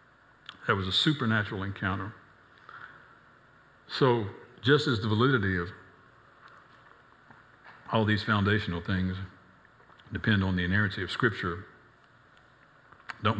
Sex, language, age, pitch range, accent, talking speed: male, English, 60-79, 95-120 Hz, American, 100 wpm